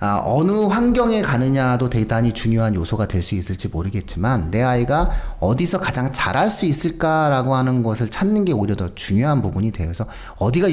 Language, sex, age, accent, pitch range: Korean, male, 40-59, native, 95-145 Hz